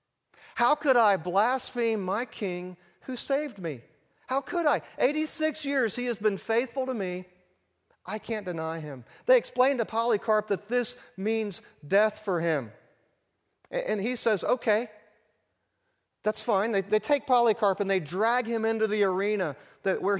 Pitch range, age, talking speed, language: 180-220 Hz, 40-59, 155 wpm, English